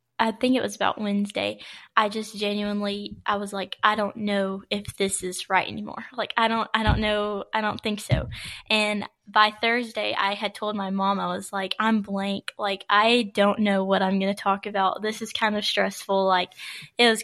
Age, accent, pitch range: 10-29, American, 195-215 Hz